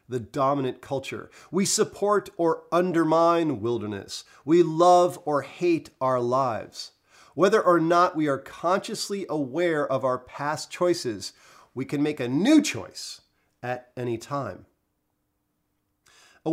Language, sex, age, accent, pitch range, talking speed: English, male, 40-59, American, 130-180 Hz, 125 wpm